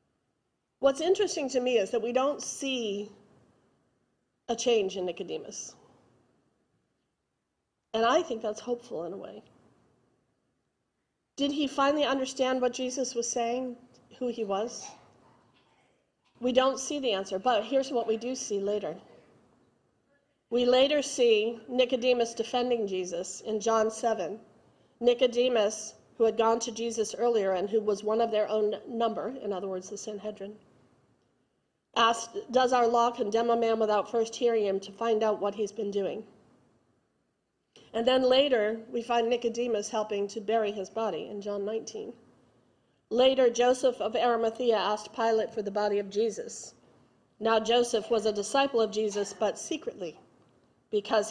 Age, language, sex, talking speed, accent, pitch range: 40-59, English, female, 145 wpm, American, 215-250 Hz